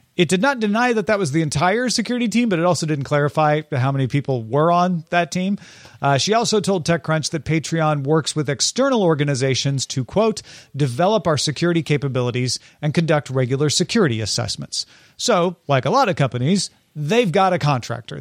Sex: male